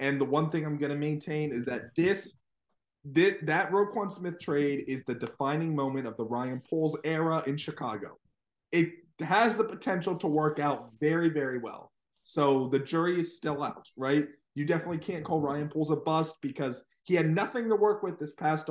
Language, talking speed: English, 195 wpm